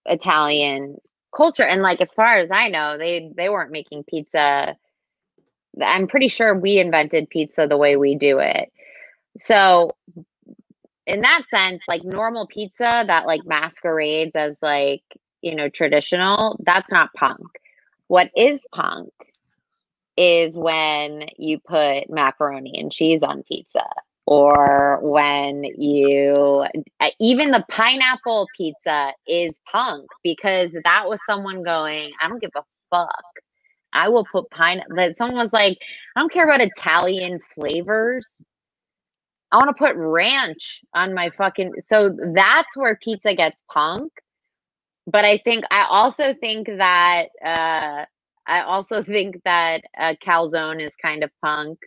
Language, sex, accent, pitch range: English, female, American, 155-210 Hz